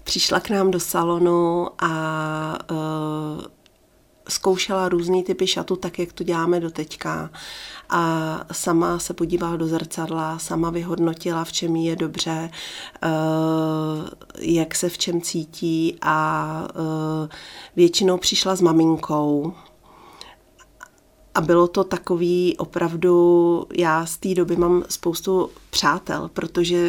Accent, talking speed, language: native, 115 wpm, Czech